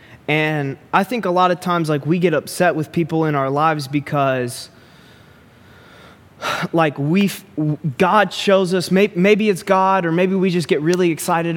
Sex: male